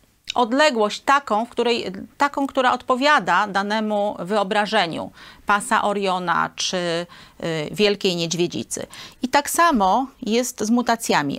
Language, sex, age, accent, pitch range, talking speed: Polish, female, 40-59, native, 195-265 Hz, 110 wpm